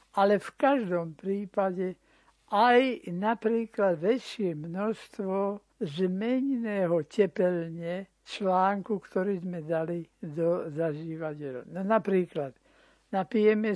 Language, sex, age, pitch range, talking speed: Slovak, male, 60-79, 165-200 Hz, 85 wpm